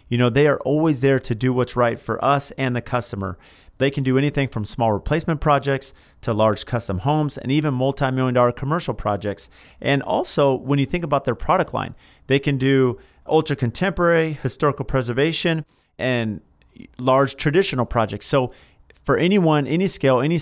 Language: English